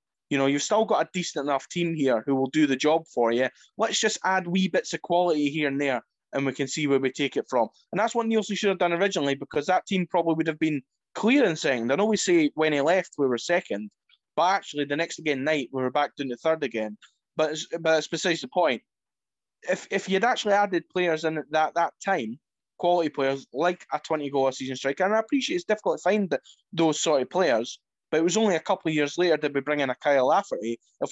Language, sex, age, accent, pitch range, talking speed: English, male, 20-39, British, 135-180 Hz, 245 wpm